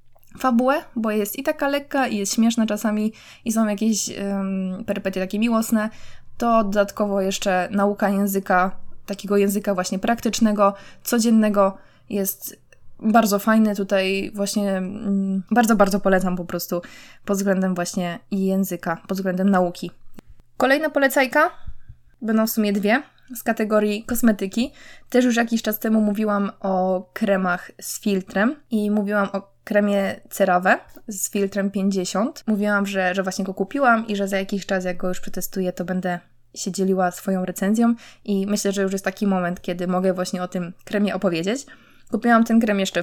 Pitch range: 190-220 Hz